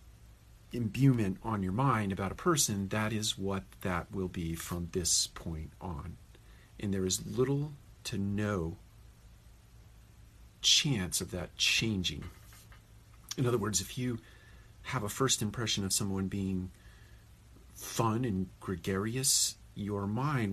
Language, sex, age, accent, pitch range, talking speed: English, male, 50-69, American, 95-110 Hz, 130 wpm